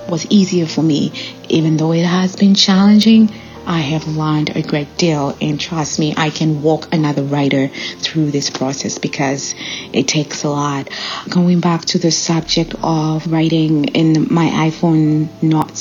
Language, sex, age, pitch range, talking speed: English, female, 30-49, 155-180 Hz, 165 wpm